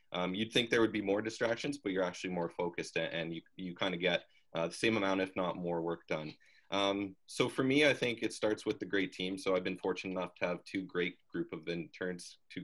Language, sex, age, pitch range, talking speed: English, male, 20-39, 90-100 Hz, 250 wpm